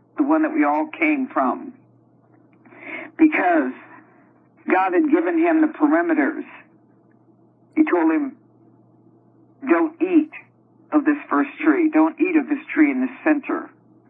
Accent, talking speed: American, 130 wpm